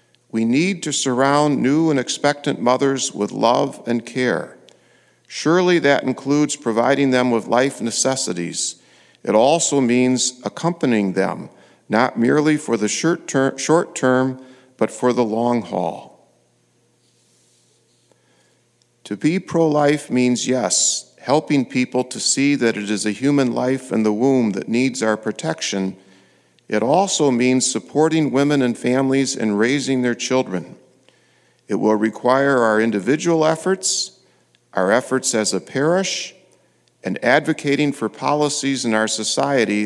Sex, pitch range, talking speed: male, 110-140 Hz, 130 wpm